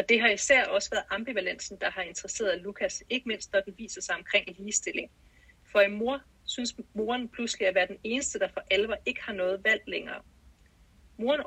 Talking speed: 200 wpm